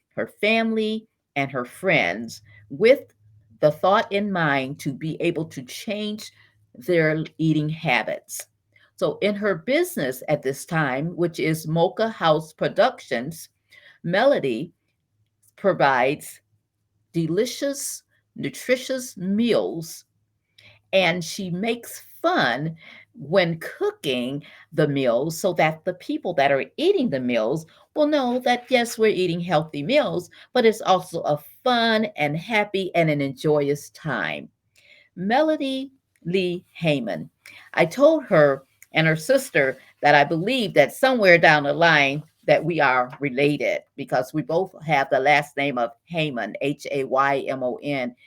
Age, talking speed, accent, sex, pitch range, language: 50-69, 125 wpm, American, female, 140-210 Hz, English